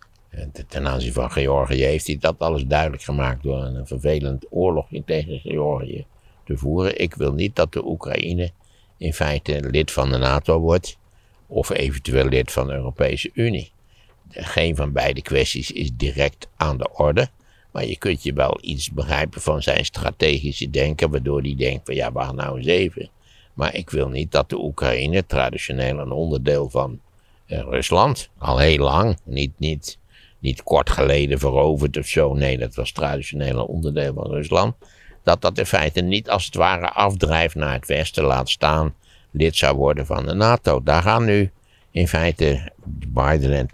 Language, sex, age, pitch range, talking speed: Dutch, male, 60-79, 65-85 Hz, 170 wpm